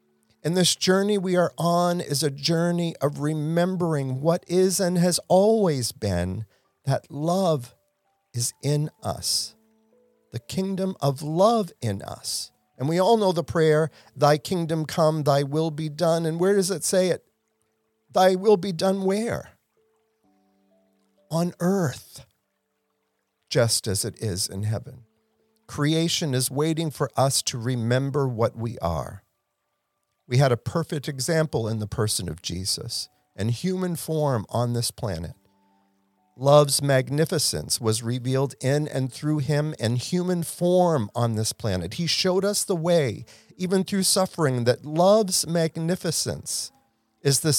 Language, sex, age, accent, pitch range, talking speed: English, male, 50-69, American, 120-175 Hz, 140 wpm